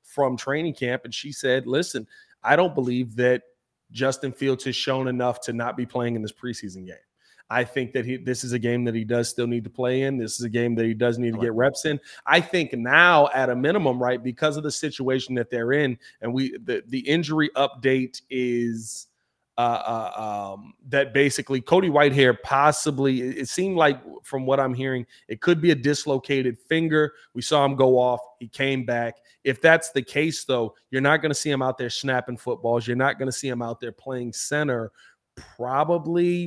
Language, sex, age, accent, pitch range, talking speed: English, male, 30-49, American, 120-145 Hz, 210 wpm